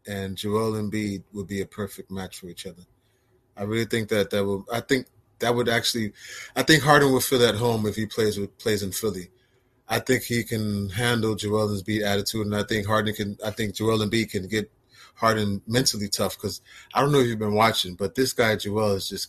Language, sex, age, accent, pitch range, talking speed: English, male, 30-49, American, 105-130 Hz, 230 wpm